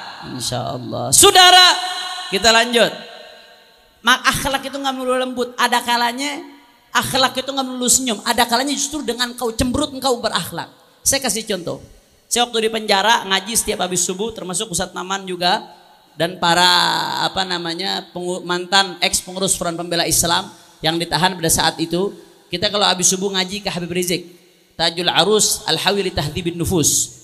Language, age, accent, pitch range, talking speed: Indonesian, 30-49, native, 180-235 Hz, 150 wpm